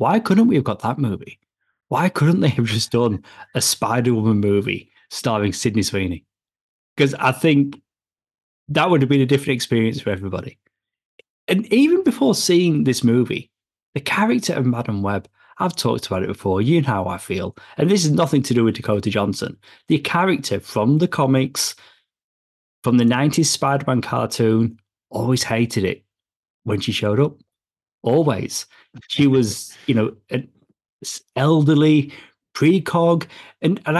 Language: English